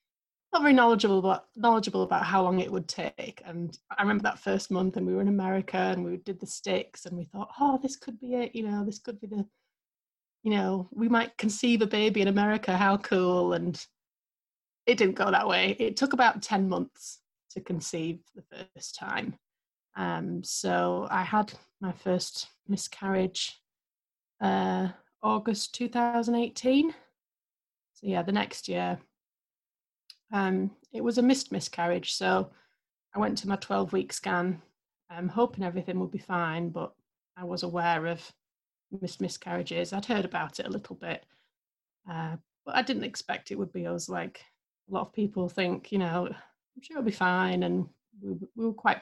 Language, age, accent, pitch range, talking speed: English, 30-49, British, 175-215 Hz, 175 wpm